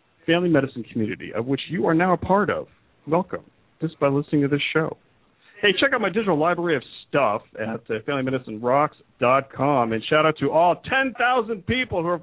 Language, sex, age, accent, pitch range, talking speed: English, male, 40-59, American, 115-165 Hz, 180 wpm